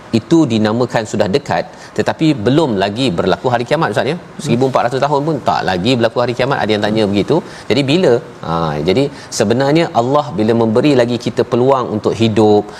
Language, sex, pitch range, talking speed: Malayalam, male, 110-140 Hz, 170 wpm